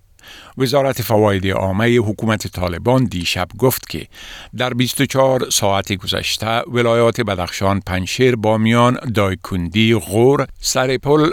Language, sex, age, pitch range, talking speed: Persian, male, 50-69, 100-125 Hz, 100 wpm